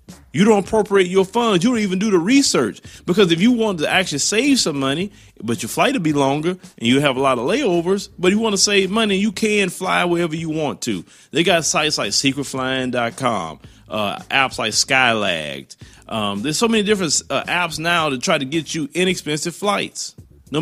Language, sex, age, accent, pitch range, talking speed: English, male, 30-49, American, 140-205 Hz, 205 wpm